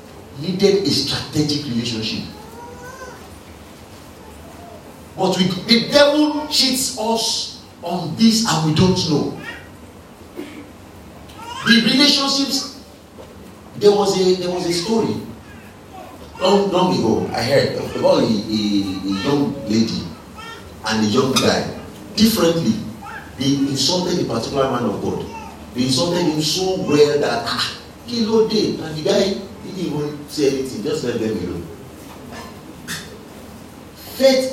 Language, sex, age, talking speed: English, male, 50-69, 120 wpm